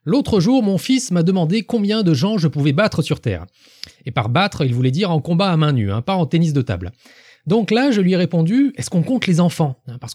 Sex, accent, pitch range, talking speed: male, French, 130-205 Hz, 250 wpm